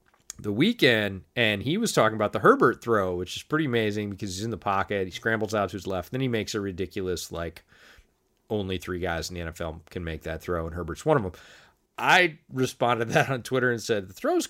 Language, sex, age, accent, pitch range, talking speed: English, male, 30-49, American, 95-125 Hz, 230 wpm